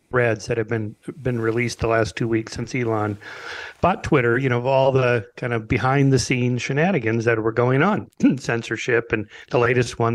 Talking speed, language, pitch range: 200 wpm, English, 115-130 Hz